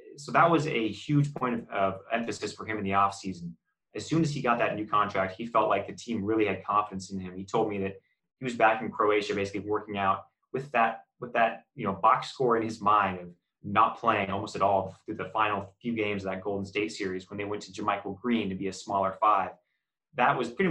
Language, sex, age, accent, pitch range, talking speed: English, male, 20-39, American, 100-115 Hz, 245 wpm